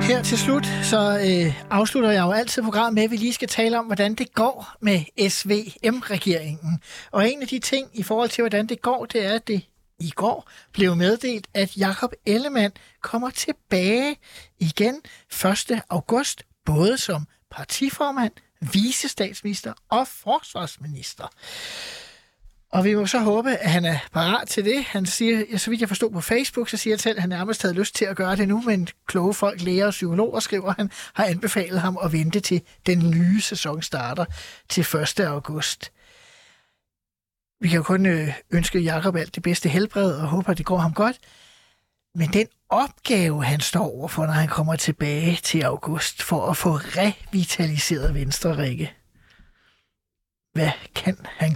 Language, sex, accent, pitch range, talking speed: Danish, male, native, 165-225 Hz, 170 wpm